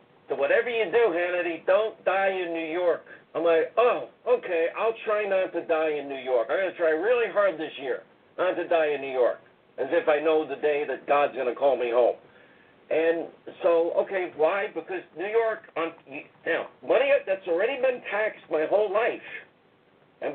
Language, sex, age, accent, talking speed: English, male, 50-69, American, 195 wpm